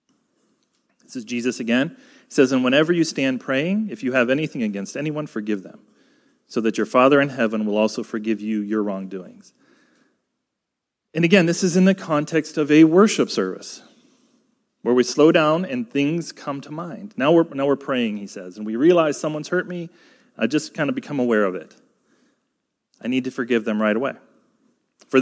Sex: male